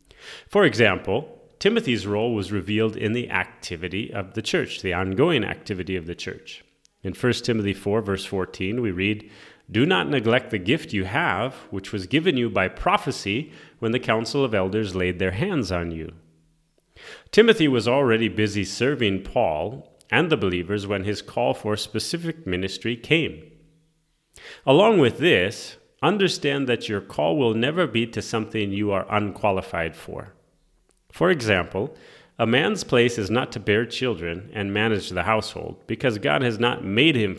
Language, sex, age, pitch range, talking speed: English, male, 30-49, 95-120 Hz, 160 wpm